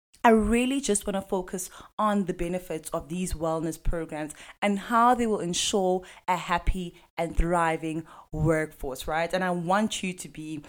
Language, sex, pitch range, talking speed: English, female, 160-200 Hz, 170 wpm